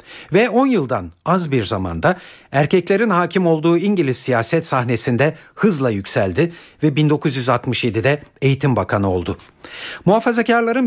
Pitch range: 125-170 Hz